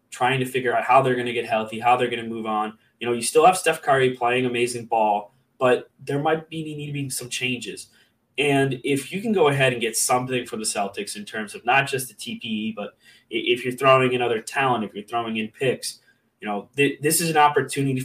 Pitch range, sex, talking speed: 115-135 Hz, male, 245 wpm